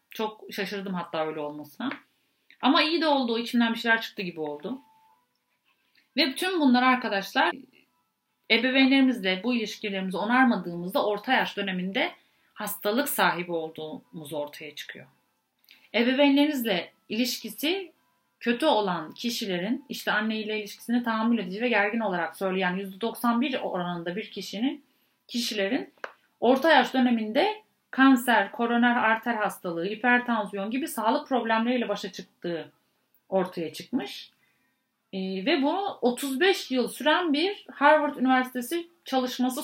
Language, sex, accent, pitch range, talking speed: Turkish, female, native, 195-260 Hz, 115 wpm